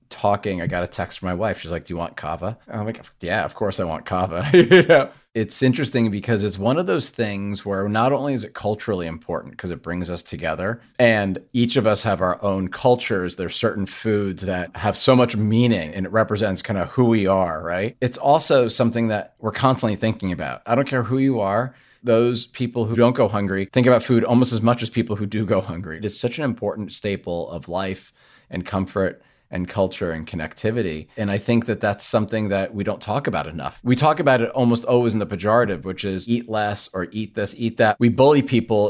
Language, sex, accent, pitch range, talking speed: English, male, American, 95-120 Hz, 225 wpm